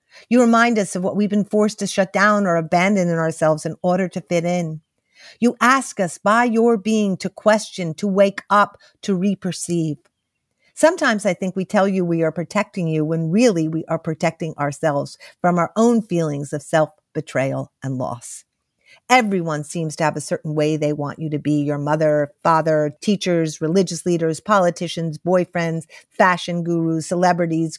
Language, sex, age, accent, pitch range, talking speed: English, female, 50-69, American, 155-195 Hz, 175 wpm